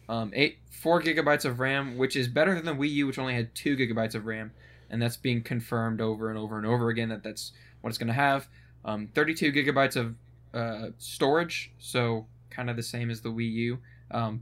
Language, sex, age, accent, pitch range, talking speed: English, male, 10-29, American, 115-130 Hz, 220 wpm